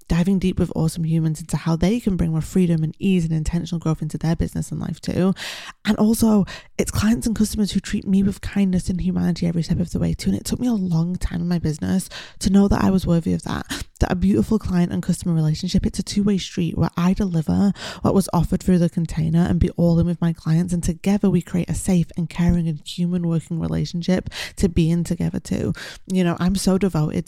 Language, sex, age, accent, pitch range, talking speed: English, female, 20-39, British, 165-185 Hz, 240 wpm